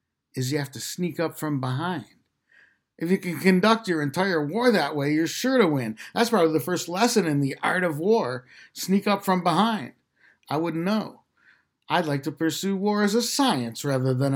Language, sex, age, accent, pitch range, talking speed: English, male, 60-79, American, 135-200 Hz, 200 wpm